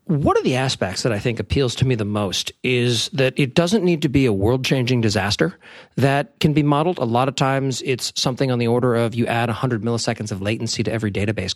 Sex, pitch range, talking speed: male, 115-150 Hz, 235 wpm